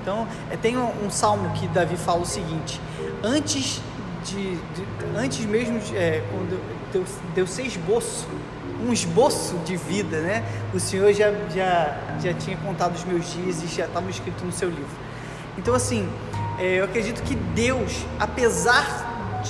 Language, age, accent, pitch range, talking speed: Portuguese, 20-39, Brazilian, 130-200 Hz, 150 wpm